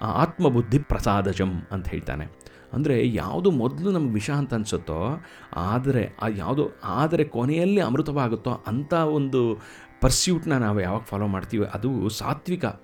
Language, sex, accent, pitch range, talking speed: Kannada, male, native, 105-150 Hz, 120 wpm